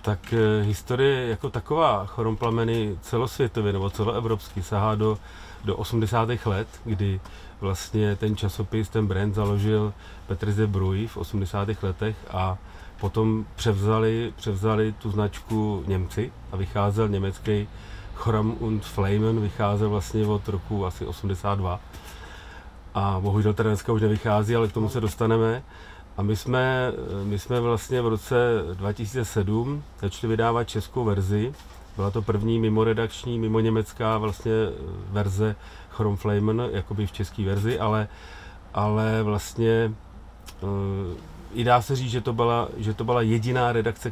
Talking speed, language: 130 wpm, Czech